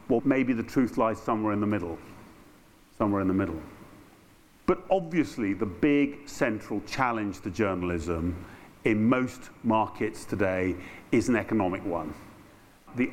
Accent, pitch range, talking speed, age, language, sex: British, 105-145 Hz, 135 wpm, 50-69, English, male